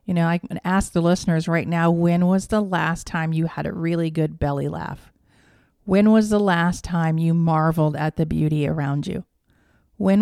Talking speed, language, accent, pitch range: 200 wpm, English, American, 160-190 Hz